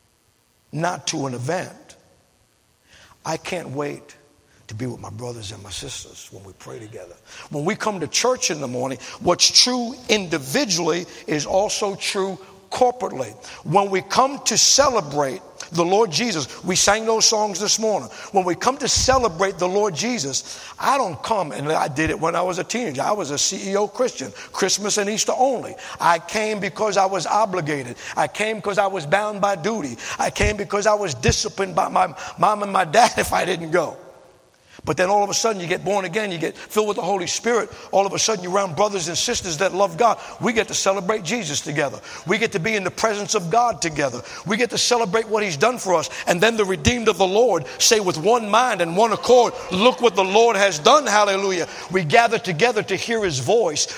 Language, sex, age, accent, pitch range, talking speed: English, male, 60-79, American, 180-230 Hz, 210 wpm